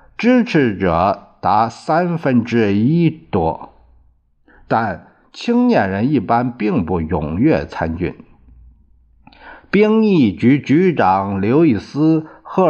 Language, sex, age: Chinese, male, 50-69